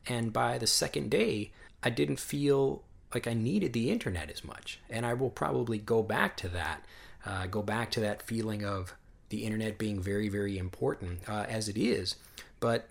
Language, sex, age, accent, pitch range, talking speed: English, male, 30-49, American, 105-130 Hz, 190 wpm